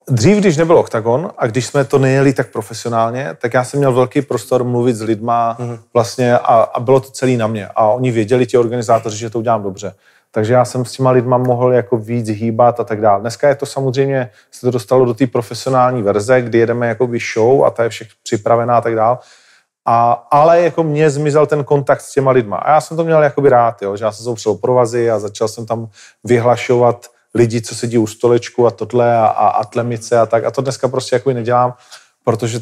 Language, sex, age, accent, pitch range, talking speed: Czech, male, 30-49, native, 115-130 Hz, 220 wpm